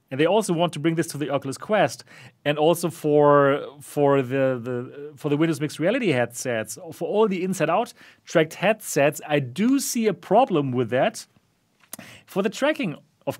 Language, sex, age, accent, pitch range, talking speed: English, male, 40-59, German, 145-185 Hz, 185 wpm